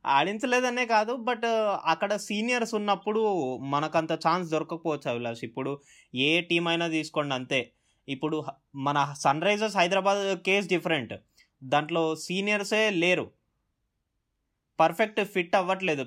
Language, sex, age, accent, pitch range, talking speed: Telugu, male, 20-39, native, 130-190 Hz, 100 wpm